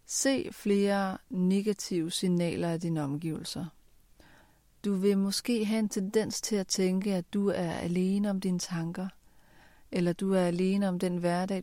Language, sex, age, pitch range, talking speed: Danish, female, 40-59, 175-205 Hz, 155 wpm